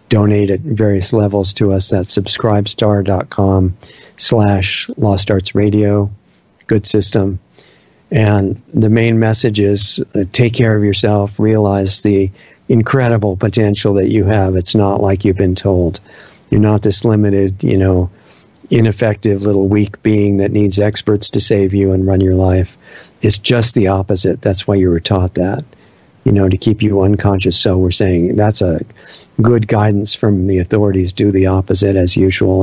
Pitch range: 95-105 Hz